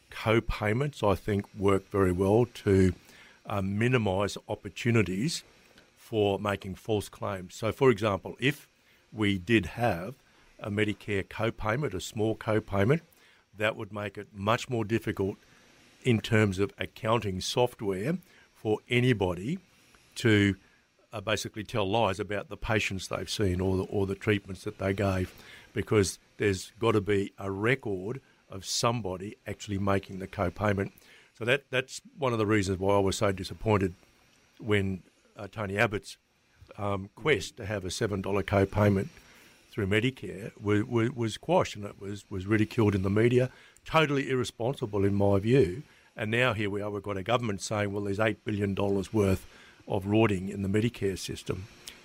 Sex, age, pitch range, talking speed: male, 60-79, 100-115 Hz, 155 wpm